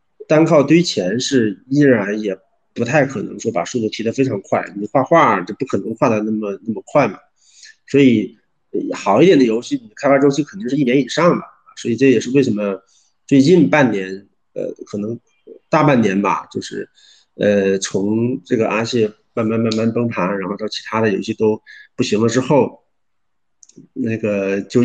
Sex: male